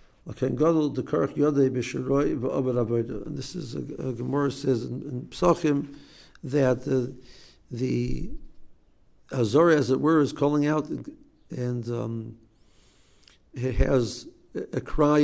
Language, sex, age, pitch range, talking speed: English, male, 60-79, 125-145 Hz, 100 wpm